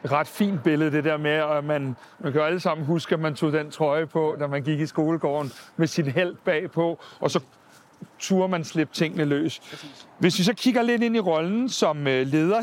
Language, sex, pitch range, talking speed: Danish, male, 170-220 Hz, 220 wpm